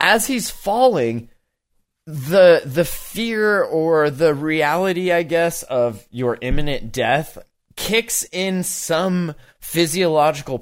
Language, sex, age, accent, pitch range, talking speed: English, male, 20-39, American, 130-175 Hz, 105 wpm